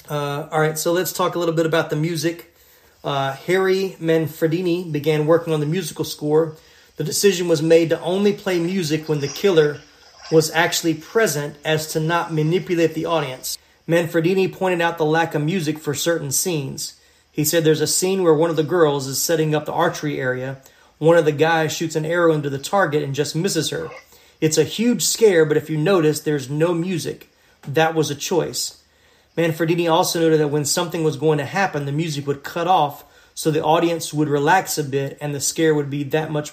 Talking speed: 205 wpm